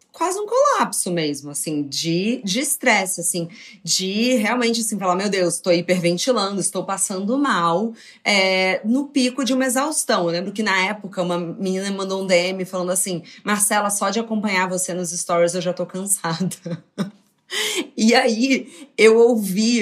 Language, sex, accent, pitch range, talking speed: Portuguese, female, Brazilian, 185-240 Hz, 160 wpm